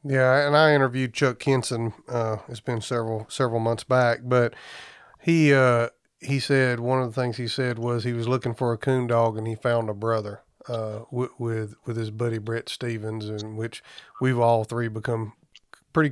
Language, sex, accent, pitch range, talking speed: English, male, American, 115-130 Hz, 190 wpm